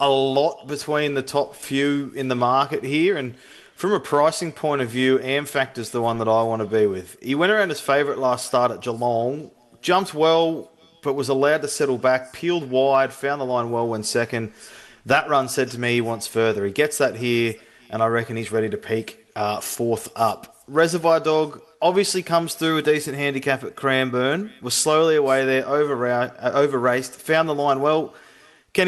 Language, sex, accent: English, male, Australian